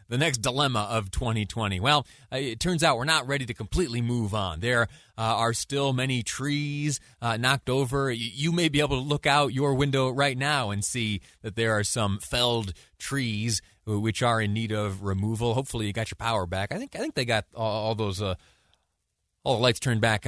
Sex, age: male, 30-49